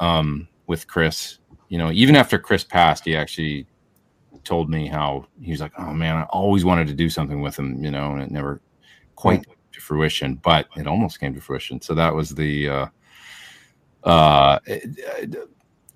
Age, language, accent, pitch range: 40-59, English, American, 75-90 Hz